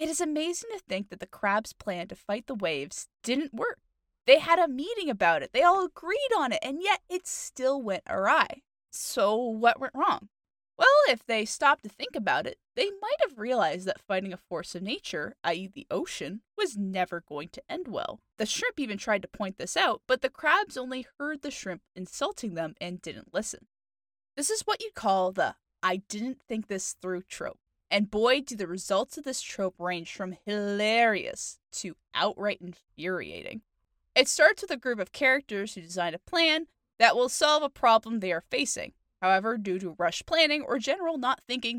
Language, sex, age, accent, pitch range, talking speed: English, female, 10-29, American, 190-285 Hz, 195 wpm